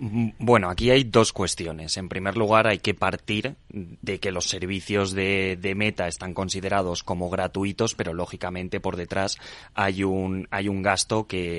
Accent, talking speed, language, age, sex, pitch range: Spanish, 165 wpm, Spanish, 20-39, male, 95-110 Hz